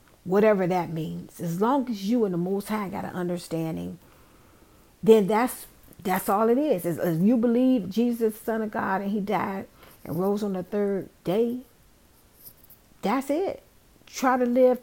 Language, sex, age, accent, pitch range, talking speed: English, female, 50-69, American, 175-215 Hz, 170 wpm